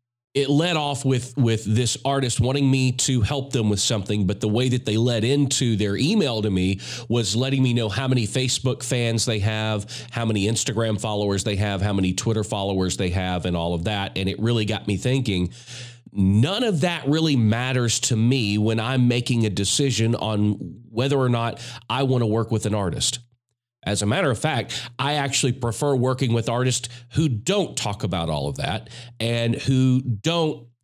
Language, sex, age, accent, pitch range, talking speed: English, male, 40-59, American, 110-135 Hz, 195 wpm